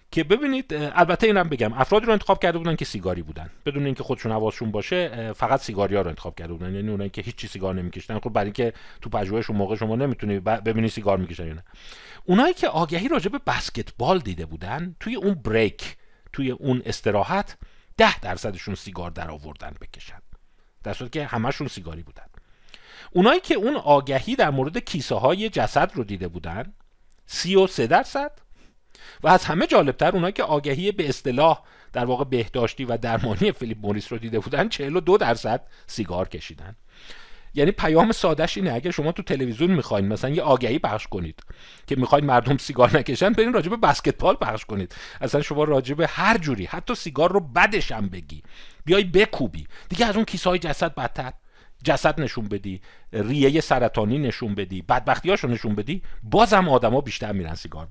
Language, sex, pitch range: Persian, male, 105-170 Hz